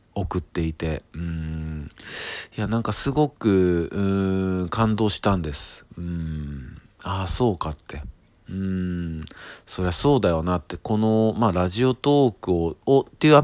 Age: 40-59